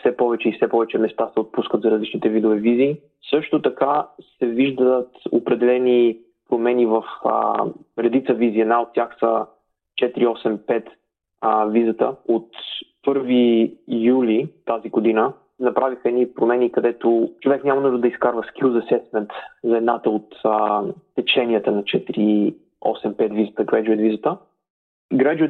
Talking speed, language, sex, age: 130 wpm, Bulgarian, male, 20-39